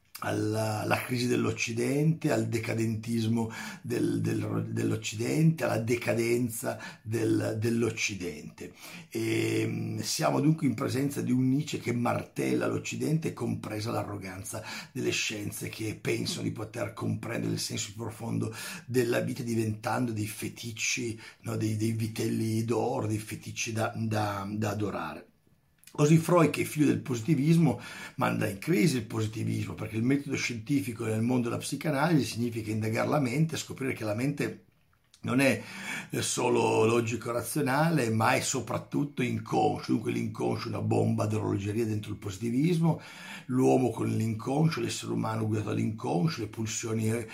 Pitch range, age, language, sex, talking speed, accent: 110-130 Hz, 50-69, Italian, male, 135 wpm, native